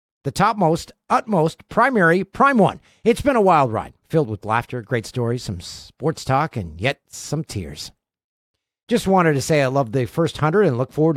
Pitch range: 125-180 Hz